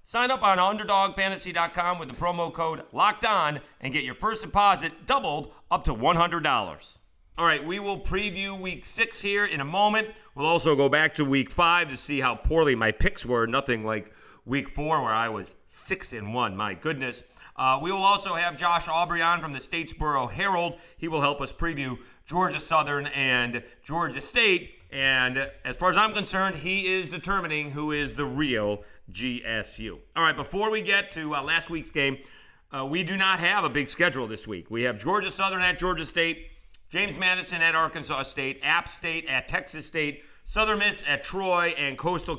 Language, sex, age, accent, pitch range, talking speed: English, male, 30-49, American, 135-185 Hz, 190 wpm